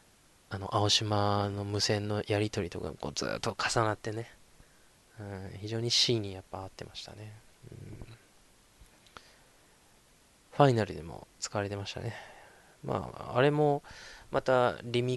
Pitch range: 100-130 Hz